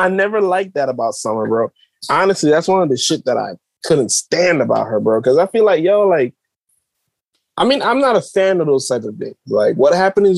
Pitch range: 130-180 Hz